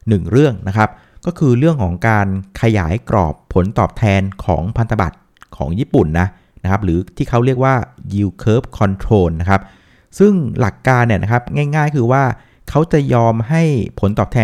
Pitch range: 95-130 Hz